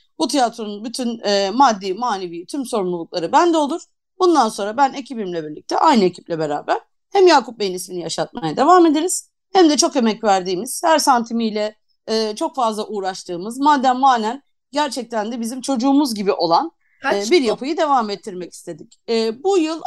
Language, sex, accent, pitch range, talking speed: Turkish, female, native, 195-305 Hz, 160 wpm